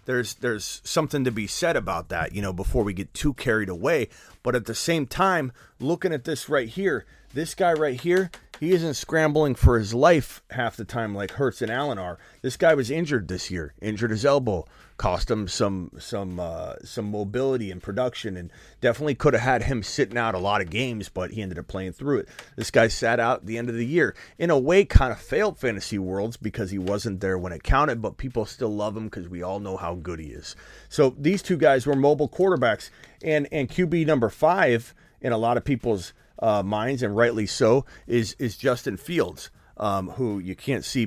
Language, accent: English, American